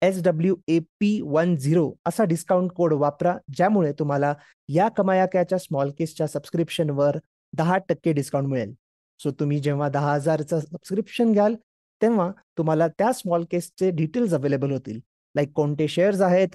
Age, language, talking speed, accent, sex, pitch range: 30-49, Marathi, 150 wpm, native, male, 145-195 Hz